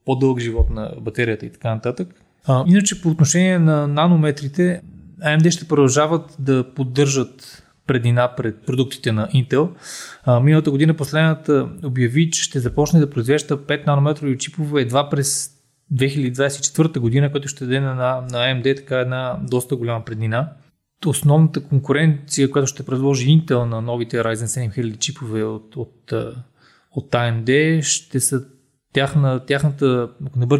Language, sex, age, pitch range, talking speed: Bulgarian, male, 20-39, 130-160 Hz, 140 wpm